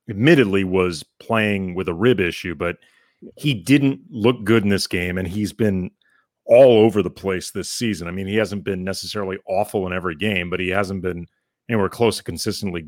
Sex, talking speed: male, 195 wpm